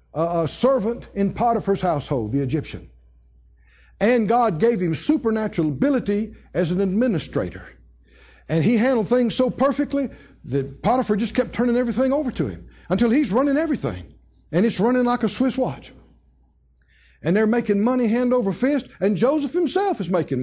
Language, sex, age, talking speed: English, male, 60-79, 160 wpm